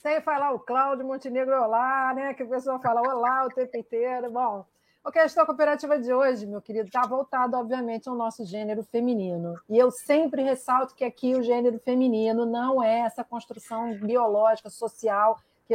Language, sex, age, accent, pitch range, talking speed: Portuguese, female, 40-59, Brazilian, 215-255 Hz, 175 wpm